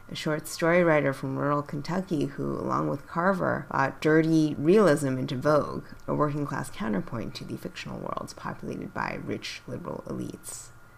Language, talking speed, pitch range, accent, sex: English, 155 wpm, 130-170 Hz, American, female